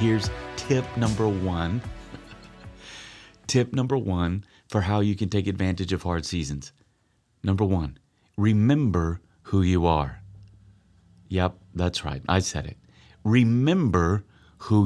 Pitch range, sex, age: 90-115 Hz, male, 30-49